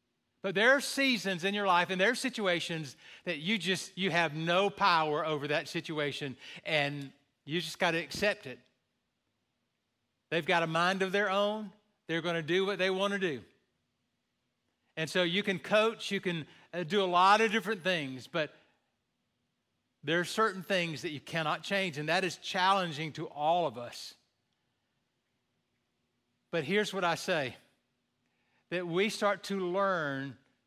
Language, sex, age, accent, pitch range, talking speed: English, male, 40-59, American, 150-195 Hz, 165 wpm